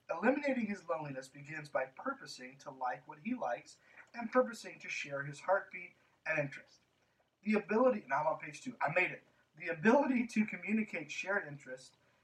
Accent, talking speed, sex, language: American, 170 wpm, male, English